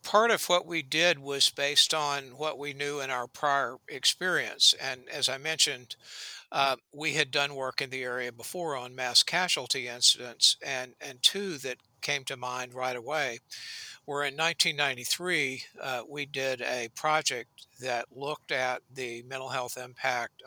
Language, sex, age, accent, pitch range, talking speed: English, male, 60-79, American, 125-145 Hz, 165 wpm